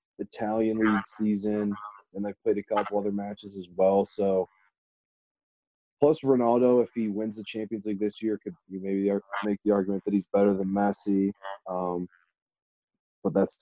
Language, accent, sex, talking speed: English, American, male, 165 wpm